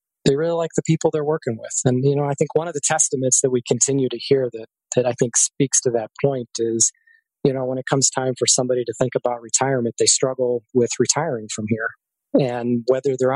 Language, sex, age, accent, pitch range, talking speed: English, male, 20-39, American, 120-145 Hz, 235 wpm